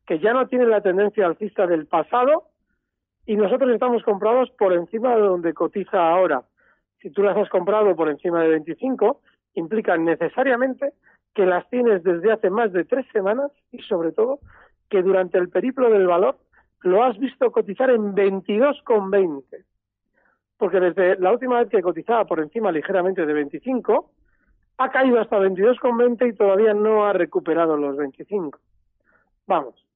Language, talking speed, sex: Spanish, 155 wpm, male